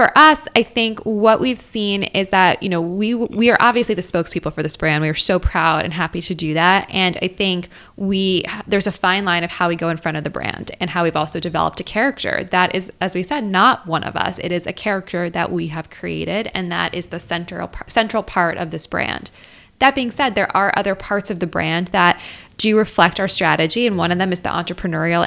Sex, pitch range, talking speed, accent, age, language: female, 175-200 Hz, 245 wpm, American, 10-29, English